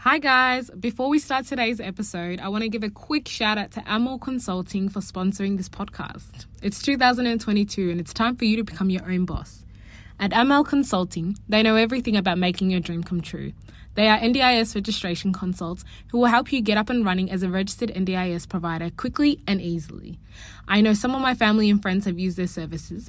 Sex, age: female, 20-39